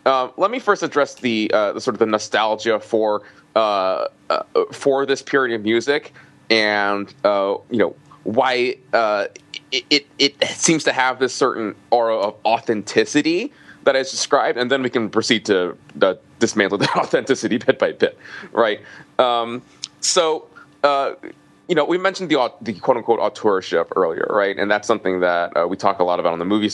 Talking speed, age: 185 wpm, 20-39